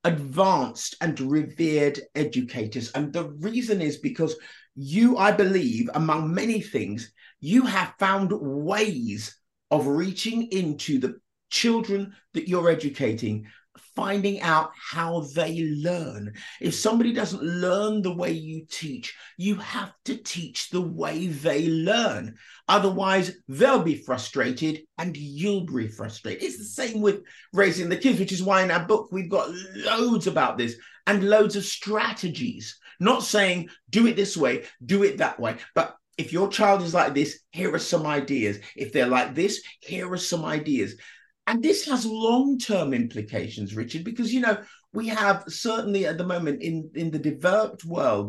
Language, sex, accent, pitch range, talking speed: English, male, British, 150-205 Hz, 160 wpm